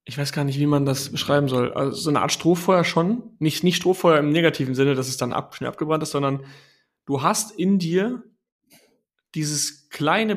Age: 30-49